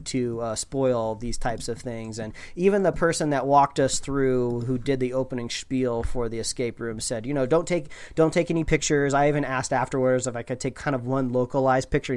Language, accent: English, American